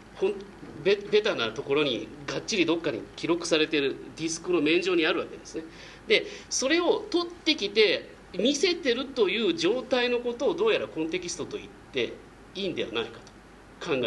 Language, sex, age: Japanese, male, 40-59